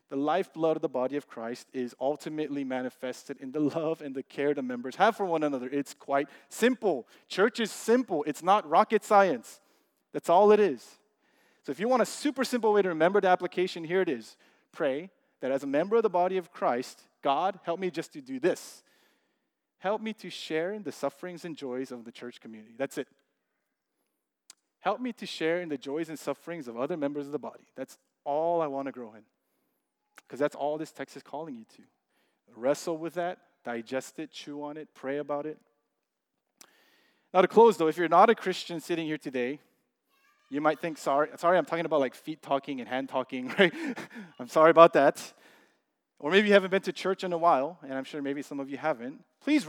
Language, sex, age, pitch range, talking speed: English, male, 30-49, 140-195 Hz, 210 wpm